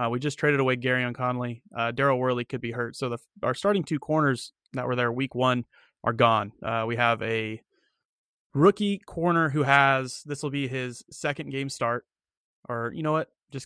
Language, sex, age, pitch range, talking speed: English, male, 30-49, 120-140 Hz, 205 wpm